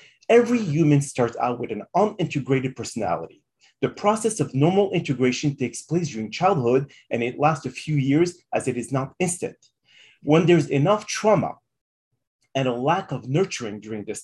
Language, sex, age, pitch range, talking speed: English, male, 30-49, 125-175 Hz, 165 wpm